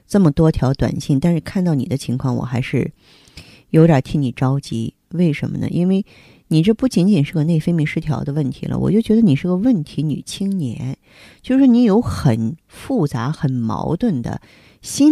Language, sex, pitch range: Chinese, female, 125-165 Hz